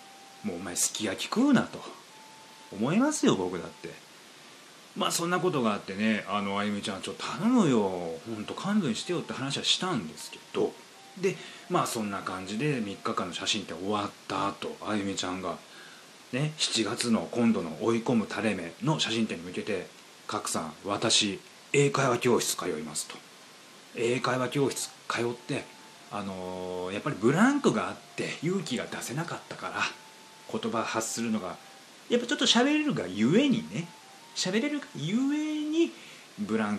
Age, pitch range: 30-49, 110-185 Hz